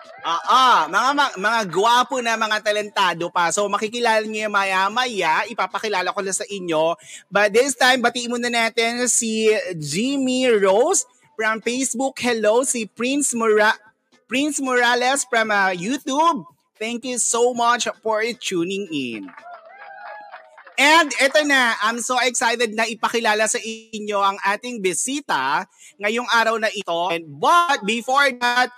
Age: 30-49